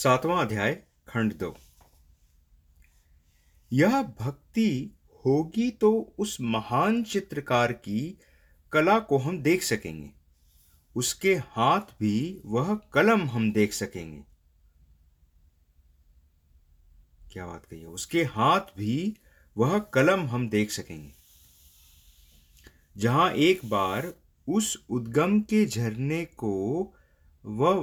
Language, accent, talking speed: English, Indian, 100 wpm